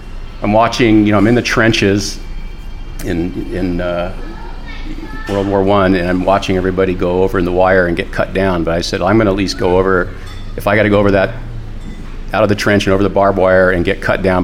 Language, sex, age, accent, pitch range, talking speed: English, male, 50-69, American, 90-100 Hz, 240 wpm